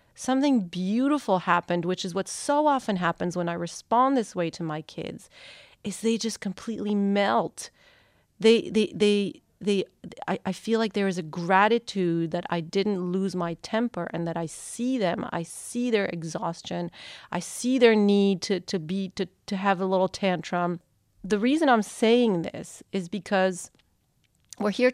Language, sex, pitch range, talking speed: English, female, 175-215 Hz, 170 wpm